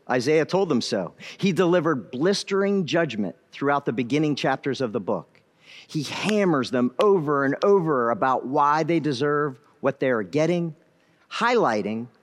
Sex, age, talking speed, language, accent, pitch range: male, 50-69, 145 wpm, English, American, 135-180 Hz